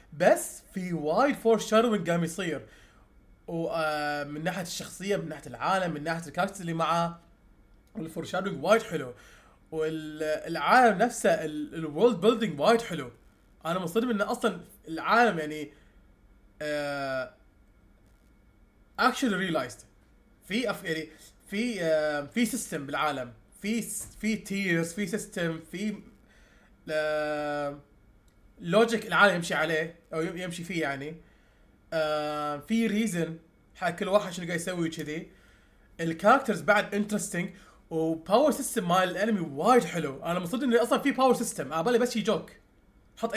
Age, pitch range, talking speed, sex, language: 20-39, 150-215 Hz, 80 wpm, male, English